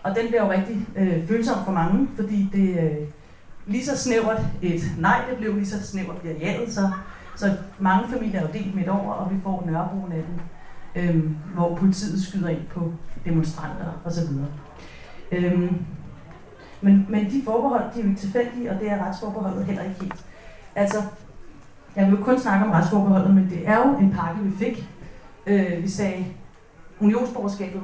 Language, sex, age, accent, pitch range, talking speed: Danish, female, 40-59, native, 170-205 Hz, 185 wpm